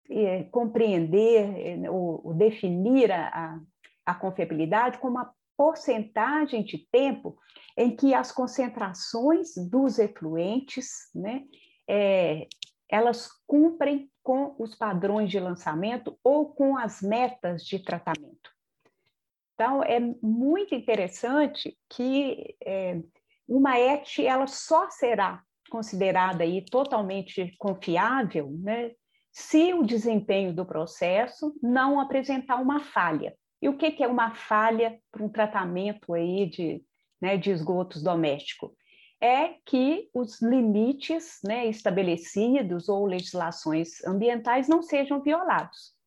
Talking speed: 105 wpm